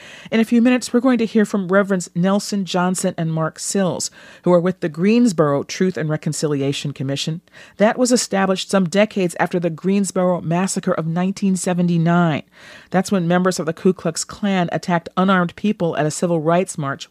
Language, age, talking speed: English, 40-59, 180 wpm